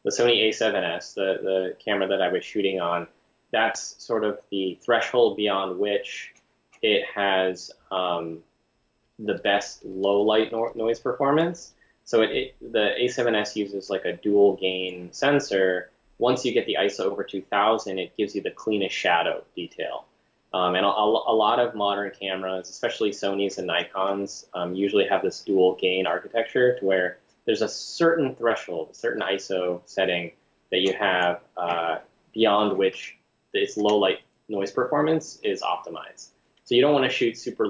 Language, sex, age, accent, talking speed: English, male, 20-39, American, 150 wpm